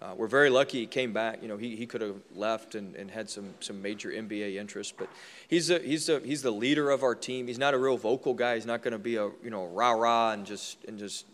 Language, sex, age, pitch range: English, male, 20-39, 105-120 Hz